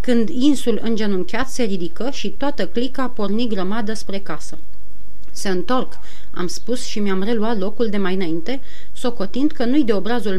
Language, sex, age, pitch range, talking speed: Romanian, female, 30-49, 195-255 Hz, 165 wpm